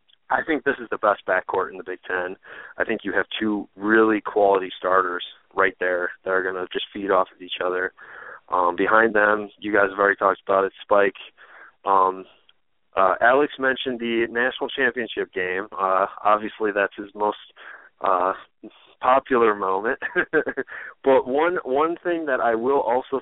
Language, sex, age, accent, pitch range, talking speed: English, male, 20-39, American, 95-115 Hz, 170 wpm